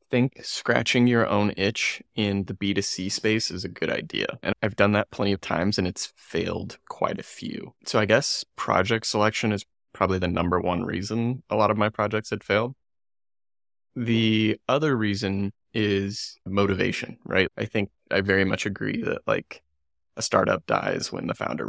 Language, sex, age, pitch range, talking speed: English, male, 20-39, 95-110 Hz, 175 wpm